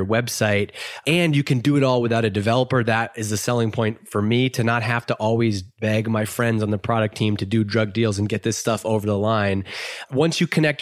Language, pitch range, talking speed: English, 110-130 Hz, 240 wpm